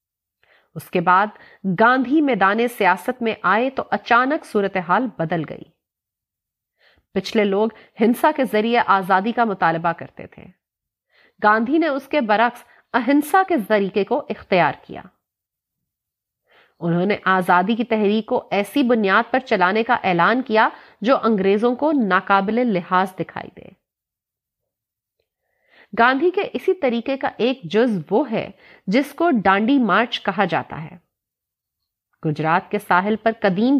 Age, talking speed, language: 30-49, 135 wpm, Urdu